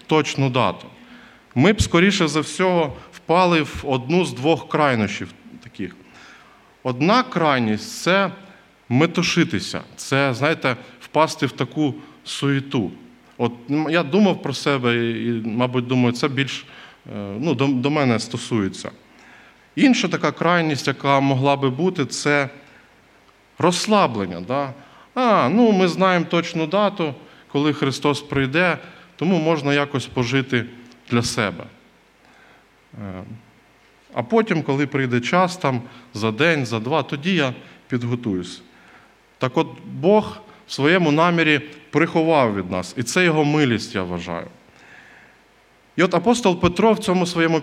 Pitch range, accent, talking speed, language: 125-170 Hz, native, 125 wpm, Russian